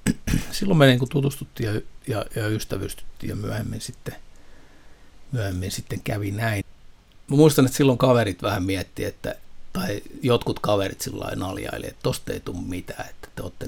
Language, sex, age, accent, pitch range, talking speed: Finnish, male, 60-79, native, 95-125 Hz, 160 wpm